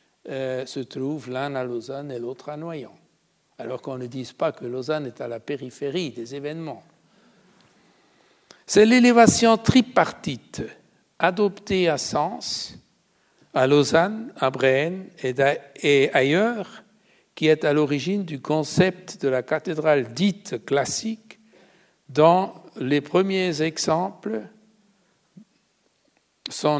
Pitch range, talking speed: 135-180 Hz, 115 wpm